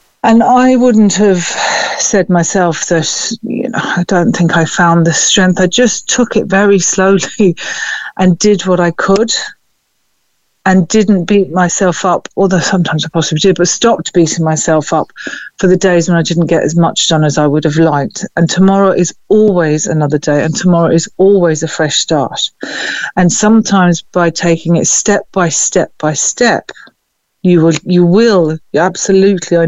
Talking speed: 175 wpm